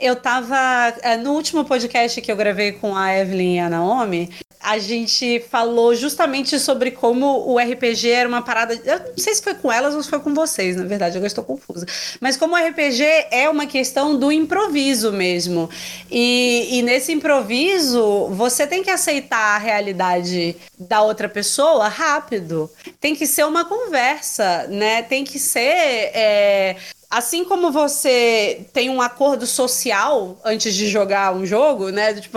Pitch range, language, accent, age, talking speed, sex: 210-280 Hz, Portuguese, Brazilian, 30-49, 165 wpm, female